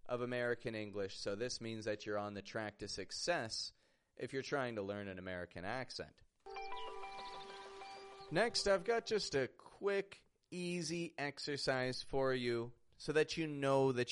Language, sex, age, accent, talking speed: English, male, 30-49, American, 155 wpm